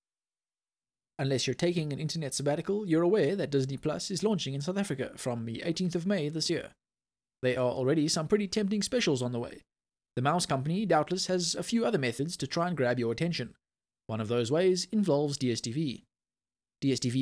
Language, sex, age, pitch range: English, male, 20-39, 130-180 Hz